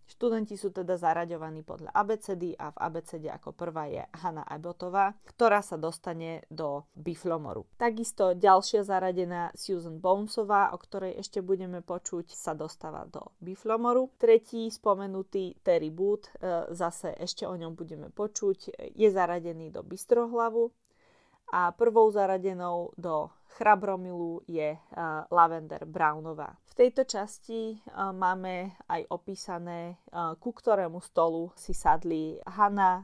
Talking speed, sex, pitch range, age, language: 120 wpm, female, 170-210 Hz, 20-39, Slovak